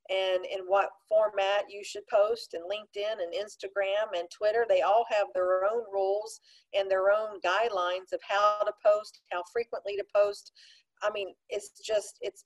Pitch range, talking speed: 185-250 Hz, 175 wpm